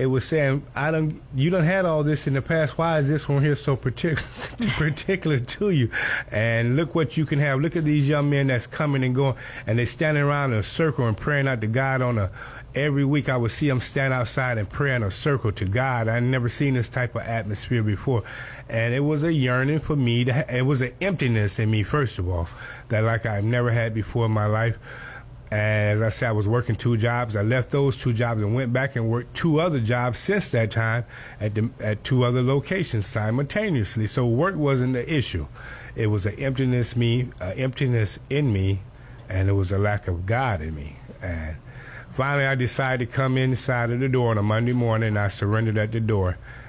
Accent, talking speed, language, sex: American, 225 wpm, English, male